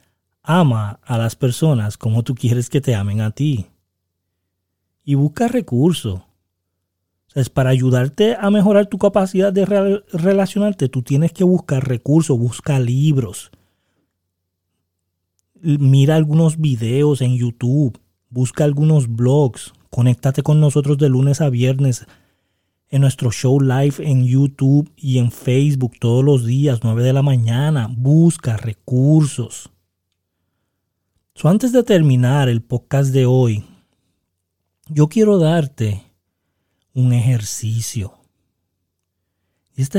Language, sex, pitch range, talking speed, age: Spanish, male, 100-145 Hz, 115 wpm, 30-49